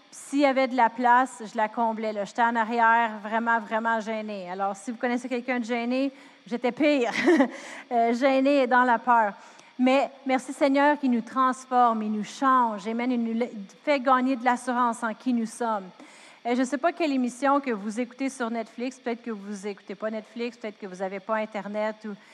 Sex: female